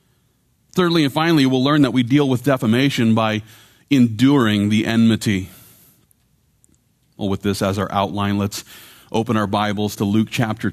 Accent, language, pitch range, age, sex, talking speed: American, English, 110-150 Hz, 40-59, male, 150 wpm